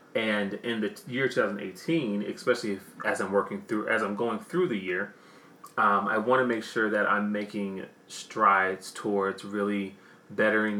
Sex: male